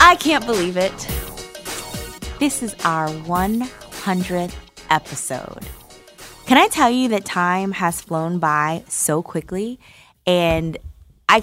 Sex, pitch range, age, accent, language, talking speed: female, 165-225 Hz, 20-39, American, English, 115 wpm